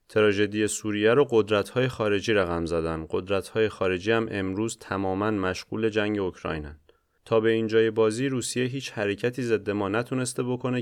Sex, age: male, 30-49